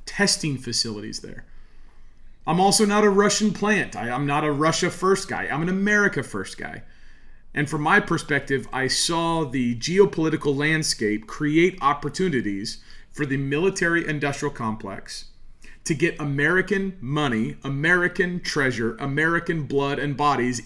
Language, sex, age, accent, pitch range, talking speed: English, male, 40-59, American, 120-175 Hz, 135 wpm